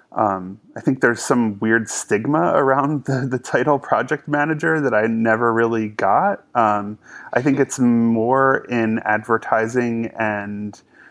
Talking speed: 140 wpm